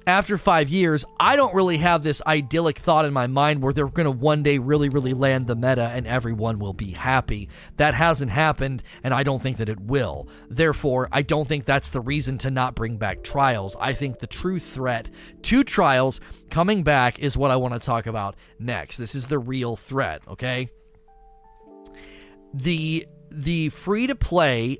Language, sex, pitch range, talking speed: English, male, 115-155 Hz, 185 wpm